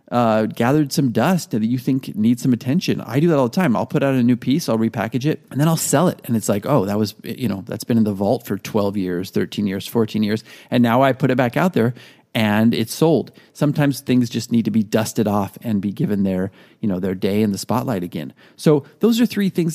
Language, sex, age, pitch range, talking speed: English, male, 30-49, 110-145 Hz, 260 wpm